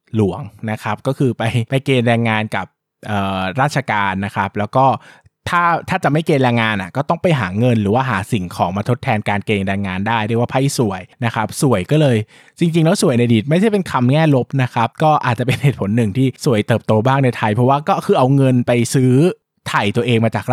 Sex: male